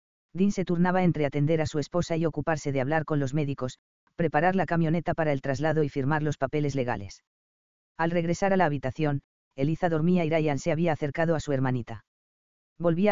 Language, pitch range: English, 120-170 Hz